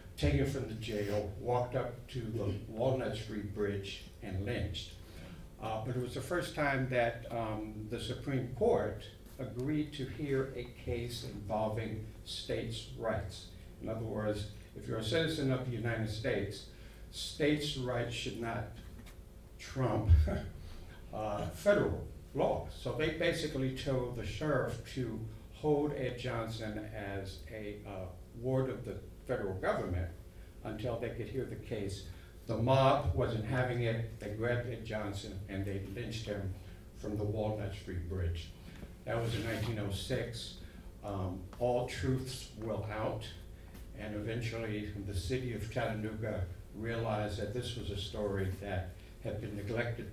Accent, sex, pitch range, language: American, male, 100-120 Hz, English